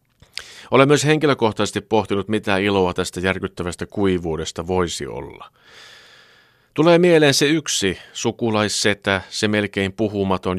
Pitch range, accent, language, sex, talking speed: 90-130 Hz, native, Finnish, male, 110 wpm